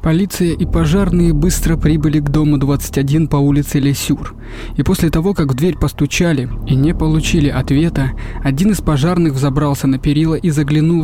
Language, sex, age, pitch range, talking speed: Russian, male, 20-39, 135-155 Hz, 165 wpm